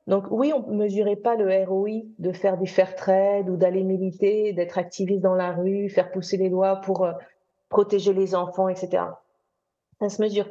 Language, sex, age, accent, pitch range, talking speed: French, female, 40-59, French, 190-245 Hz, 200 wpm